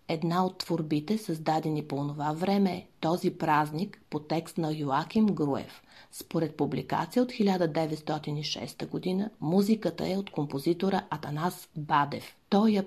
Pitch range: 155-200 Hz